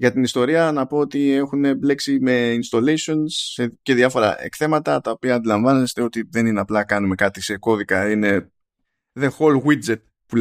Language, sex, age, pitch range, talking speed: Greek, male, 20-39, 110-150 Hz, 165 wpm